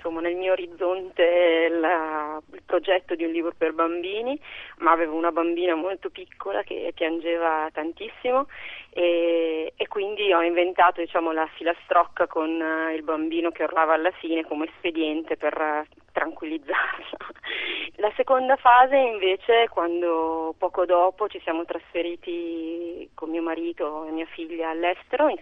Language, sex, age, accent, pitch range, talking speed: Italian, female, 30-49, native, 165-195 Hz, 140 wpm